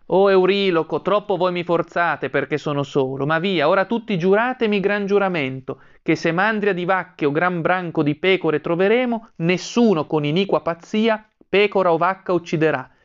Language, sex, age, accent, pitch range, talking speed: Italian, male, 30-49, native, 145-190 Hz, 165 wpm